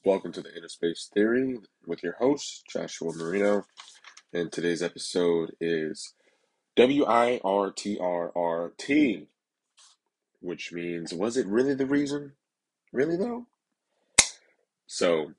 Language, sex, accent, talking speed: English, male, American, 125 wpm